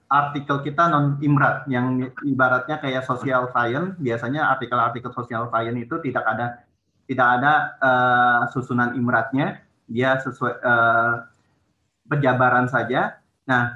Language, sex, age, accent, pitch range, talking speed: Indonesian, male, 30-49, native, 125-160 Hz, 115 wpm